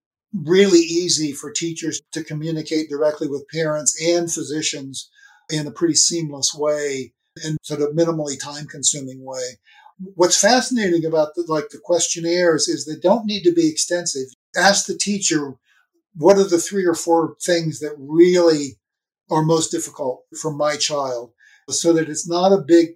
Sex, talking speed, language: male, 160 wpm, English